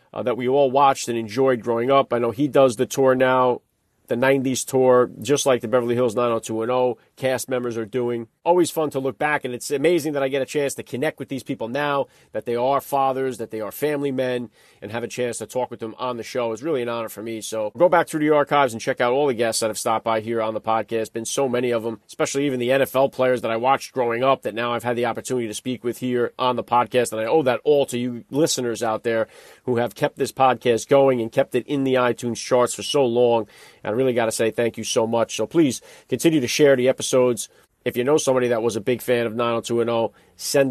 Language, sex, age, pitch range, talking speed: English, male, 30-49, 120-140 Hz, 265 wpm